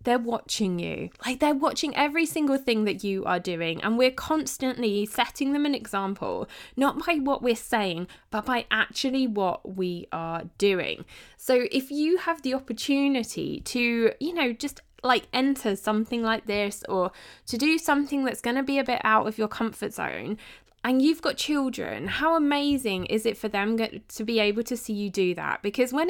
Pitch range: 205-265 Hz